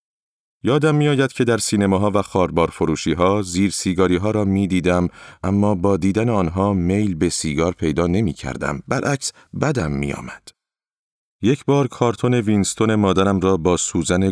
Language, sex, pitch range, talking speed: Persian, male, 85-110 Hz, 155 wpm